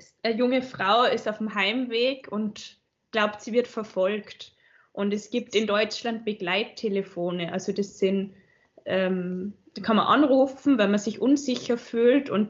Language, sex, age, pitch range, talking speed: German, female, 20-39, 195-235 Hz, 155 wpm